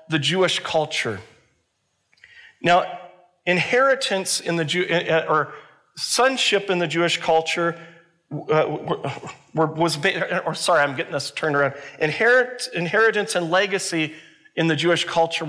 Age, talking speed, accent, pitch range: 40-59, 110 wpm, American, 150-185 Hz